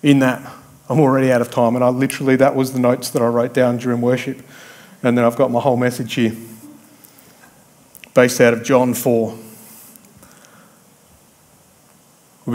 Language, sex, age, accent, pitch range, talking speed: English, male, 30-49, Australian, 120-135 Hz, 165 wpm